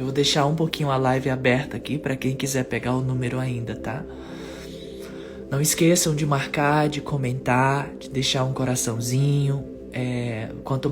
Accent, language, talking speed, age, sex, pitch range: Brazilian, Portuguese, 160 wpm, 20-39, male, 120-140 Hz